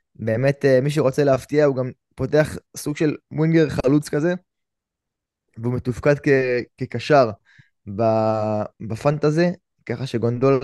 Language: Hebrew